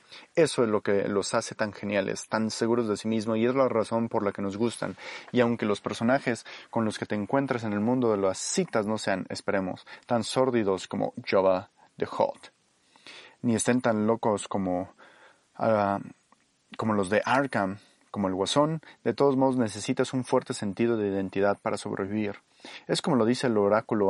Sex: male